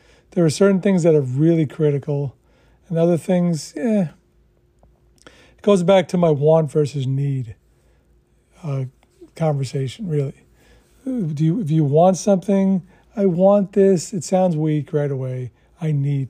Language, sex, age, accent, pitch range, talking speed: English, male, 40-59, American, 130-175 Hz, 145 wpm